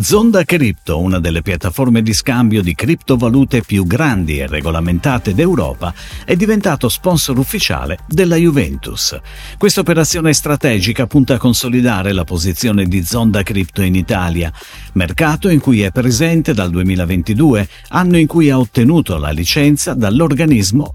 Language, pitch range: Italian, 95-150 Hz